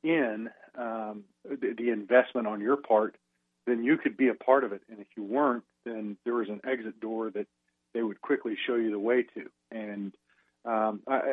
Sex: male